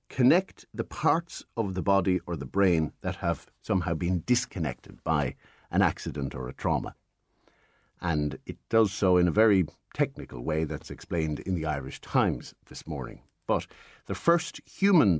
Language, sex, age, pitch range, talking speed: English, male, 60-79, 85-115 Hz, 160 wpm